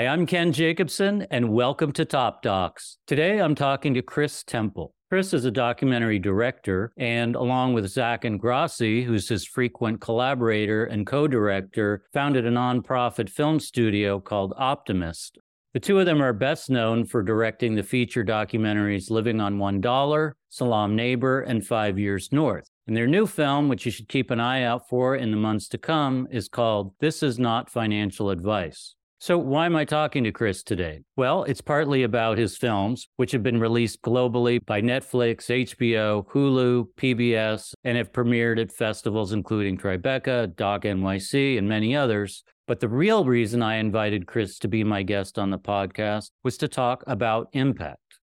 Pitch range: 105-130 Hz